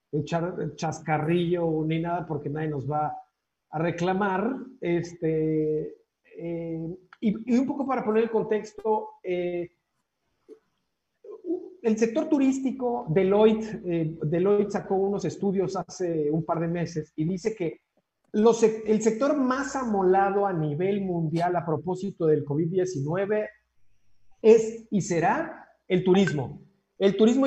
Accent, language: Mexican, Spanish